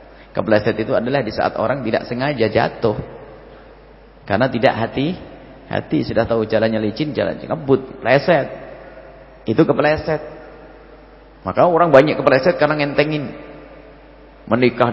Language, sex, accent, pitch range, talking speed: English, male, Indonesian, 115-135 Hz, 115 wpm